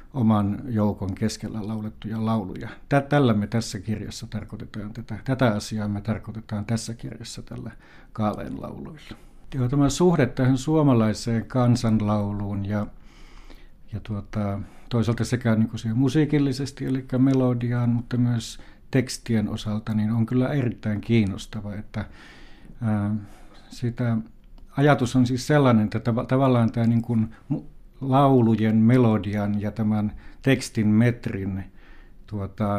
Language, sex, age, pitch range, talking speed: Finnish, male, 60-79, 105-120 Hz, 115 wpm